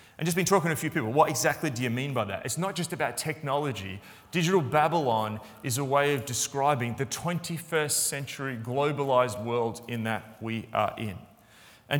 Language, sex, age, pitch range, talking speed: English, male, 30-49, 120-155 Hz, 190 wpm